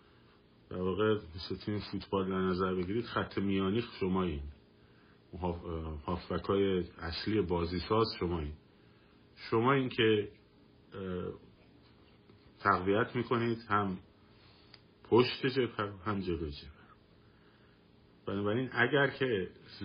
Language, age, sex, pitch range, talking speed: Persian, 50-69, male, 85-105 Hz, 90 wpm